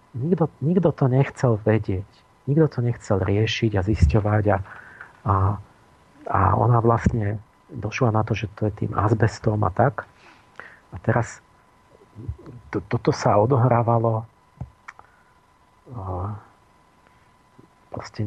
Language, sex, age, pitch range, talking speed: Slovak, male, 50-69, 105-125 Hz, 110 wpm